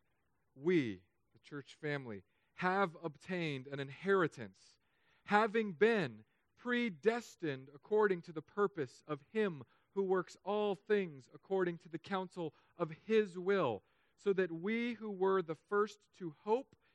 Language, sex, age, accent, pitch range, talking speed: English, male, 40-59, American, 125-190 Hz, 130 wpm